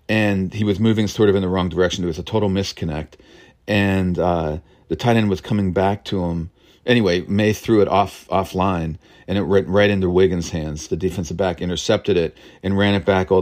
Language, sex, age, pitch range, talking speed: English, male, 40-59, 85-100 Hz, 215 wpm